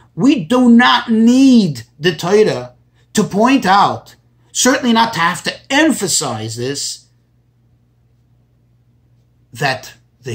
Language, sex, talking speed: English, male, 105 wpm